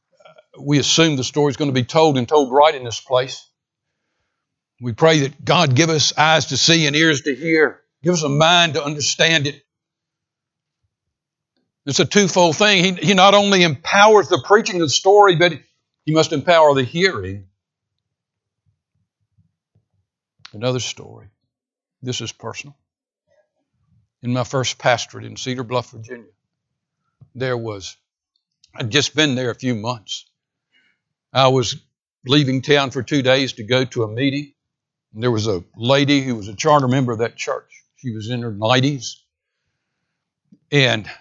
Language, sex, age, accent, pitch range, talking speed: English, male, 60-79, American, 115-145 Hz, 155 wpm